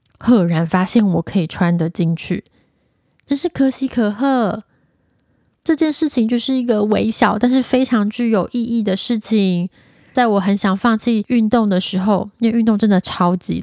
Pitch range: 180-230 Hz